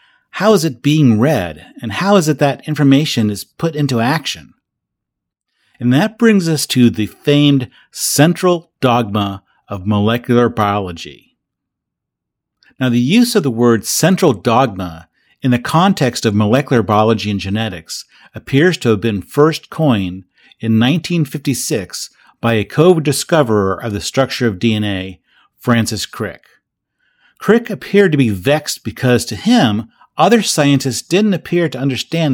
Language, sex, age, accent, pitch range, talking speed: English, male, 50-69, American, 110-155 Hz, 140 wpm